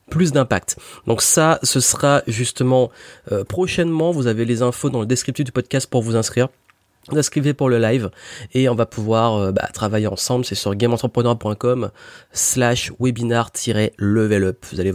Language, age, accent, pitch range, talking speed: French, 30-49, French, 110-135 Hz, 165 wpm